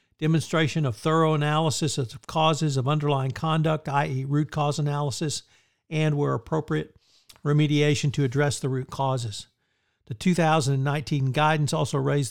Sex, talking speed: male, 130 wpm